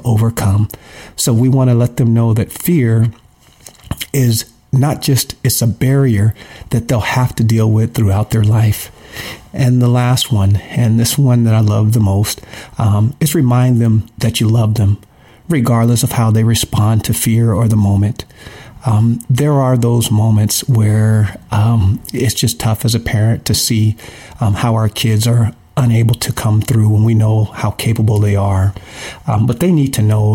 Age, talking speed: 40-59, 180 wpm